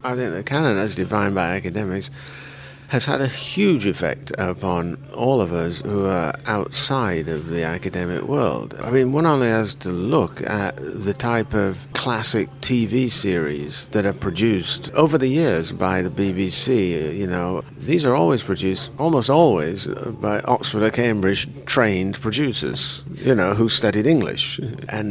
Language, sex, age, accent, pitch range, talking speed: English, male, 50-69, British, 90-125 Hz, 160 wpm